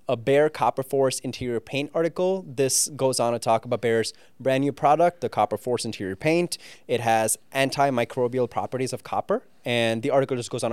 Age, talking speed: 20-39, 190 wpm